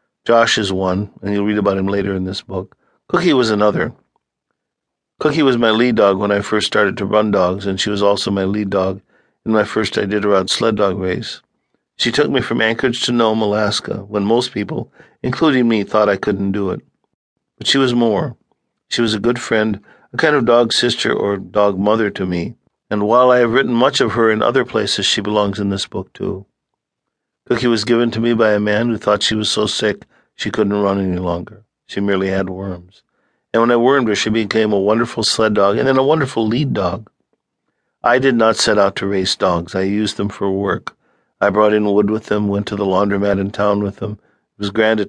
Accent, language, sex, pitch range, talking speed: American, English, male, 100-115 Hz, 225 wpm